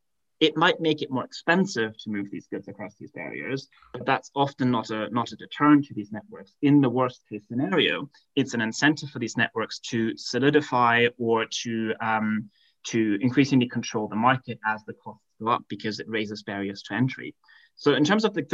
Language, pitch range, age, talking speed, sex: English, 115-145 Hz, 20-39, 195 wpm, male